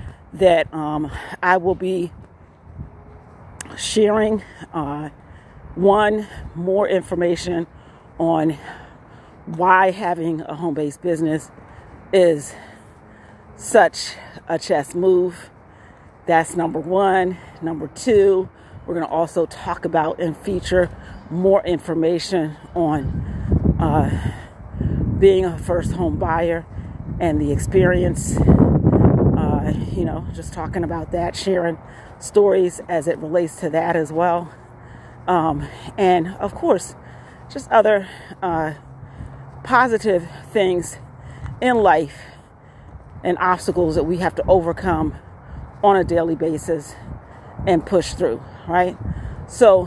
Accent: American